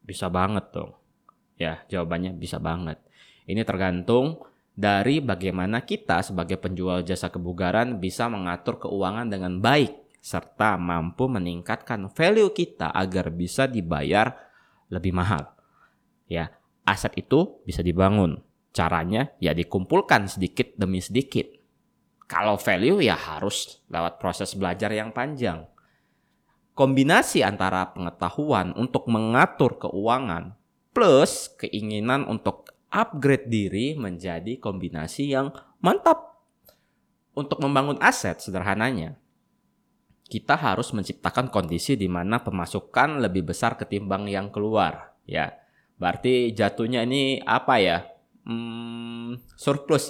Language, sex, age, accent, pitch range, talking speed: Indonesian, male, 20-39, native, 90-130 Hz, 110 wpm